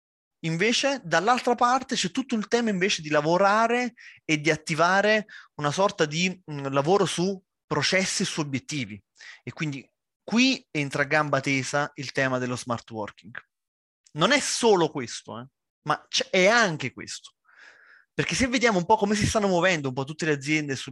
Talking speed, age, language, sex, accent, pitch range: 165 wpm, 30-49, Italian, male, native, 145-230 Hz